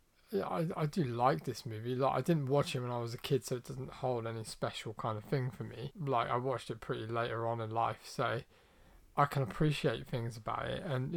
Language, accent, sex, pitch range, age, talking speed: English, British, male, 120-145 Hz, 20-39, 240 wpm